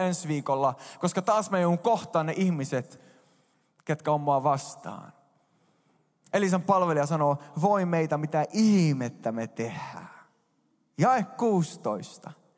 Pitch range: 145-185 Hz